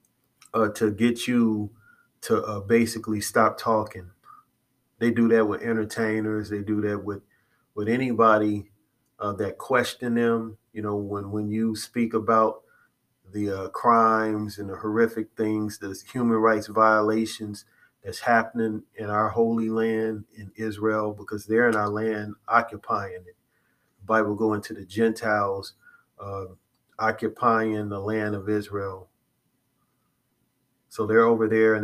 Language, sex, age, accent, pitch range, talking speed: English, male, 30-49, American, 105-115 Hz, 140 wpm